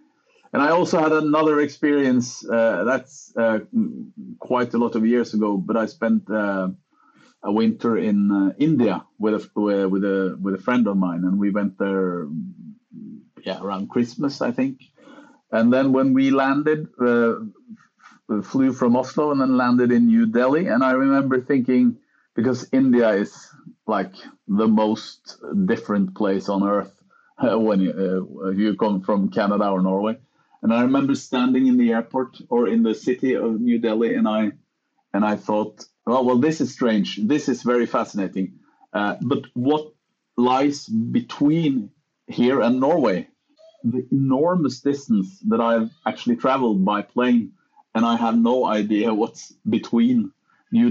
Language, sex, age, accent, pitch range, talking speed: English, male, 50-69, Norwegian, 110-150 Hz, 160 wpm